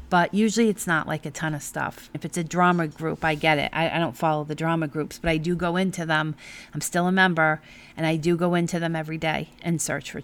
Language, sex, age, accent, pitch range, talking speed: English, female, 40-59, American, 160-205 Hz, 265 wpm